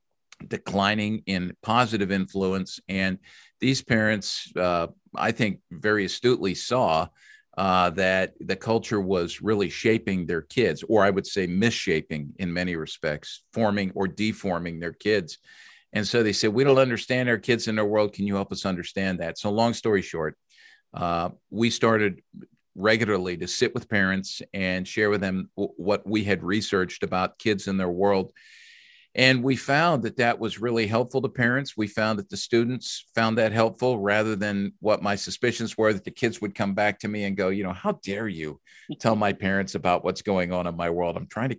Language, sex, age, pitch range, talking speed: English, male, 50-69, 95-115 Hz, 190 wpm